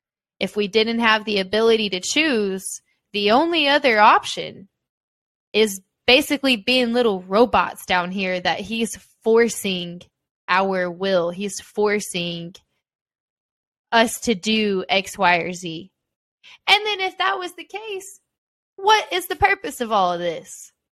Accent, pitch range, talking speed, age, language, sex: American, 205-295 Hz, 135 wpm, 10-29, English, female